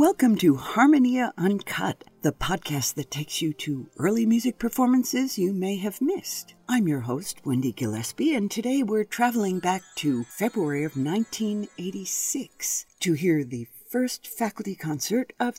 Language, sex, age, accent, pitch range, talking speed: English, female, 60-79, American, 150-245 Hz, 145 wpm